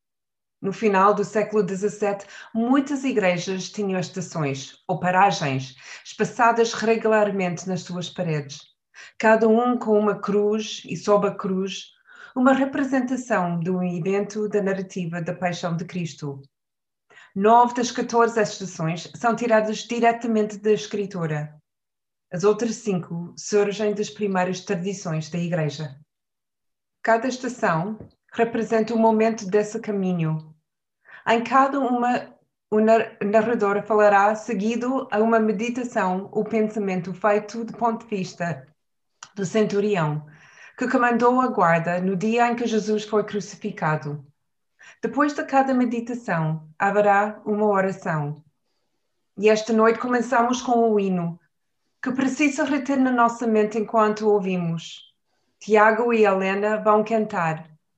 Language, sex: Portuguese, female